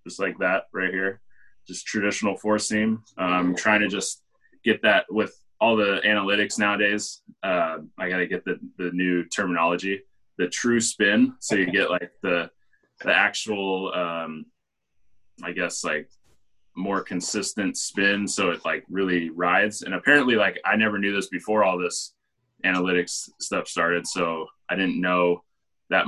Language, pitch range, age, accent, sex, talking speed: English, 85-105 Hz, 20-39, American, male, 155 wpm